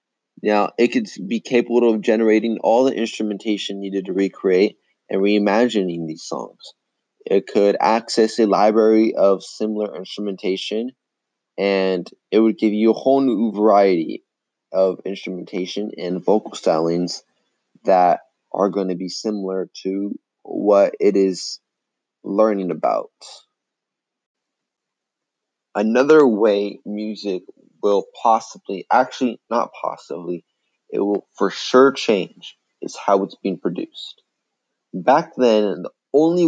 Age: 20-39